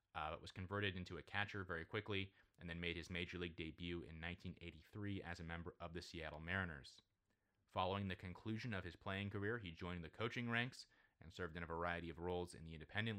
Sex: male